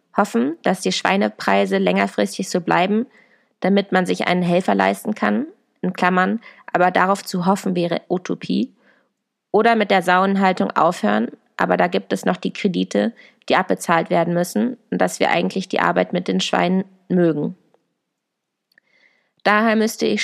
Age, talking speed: 20-39, 150 wpm